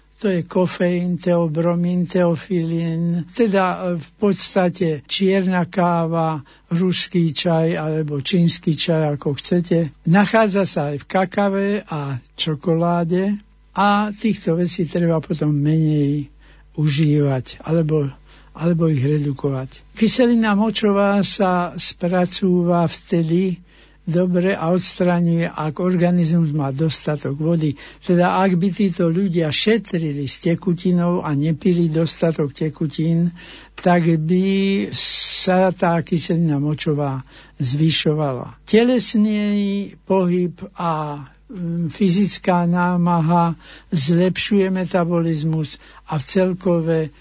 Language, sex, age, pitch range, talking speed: Slovak, male, 60-79, 155-185 Hz, 100 wpm